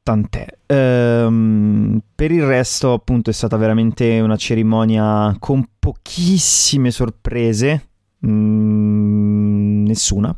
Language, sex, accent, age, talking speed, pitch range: Italian, male, native, 20-39, 80 wpm, 105-120 Hz